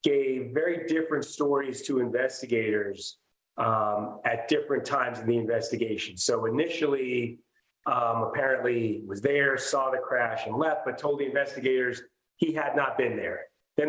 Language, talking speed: English, 145 wpm